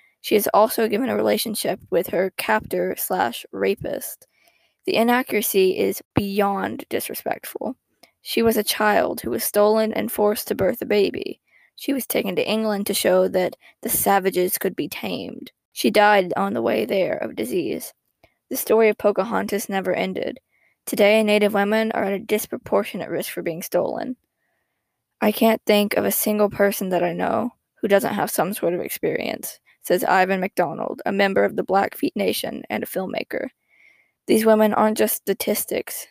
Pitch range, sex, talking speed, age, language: 195-220 Hz, female, 170 wpm, 10-29, English